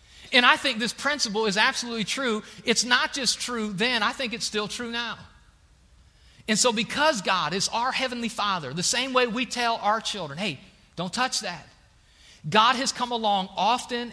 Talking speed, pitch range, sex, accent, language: 185 wpm, 195-255 Hz, male, American, English